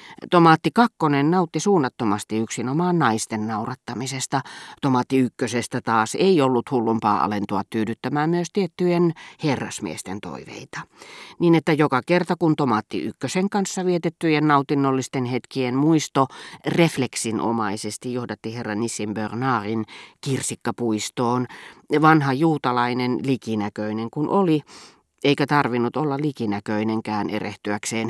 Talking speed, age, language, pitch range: 100 wpm, 40-59, Finnish, 115-160 Hz